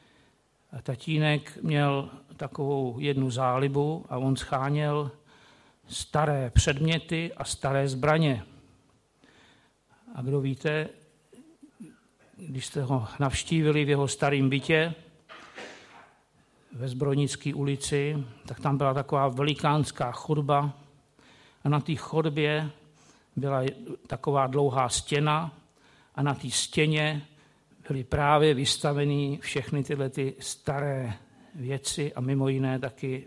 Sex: male